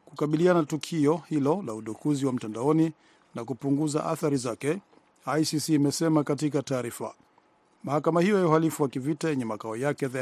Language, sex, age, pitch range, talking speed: Swahili, male, 50-69, 135-155 Hz, 145 wpm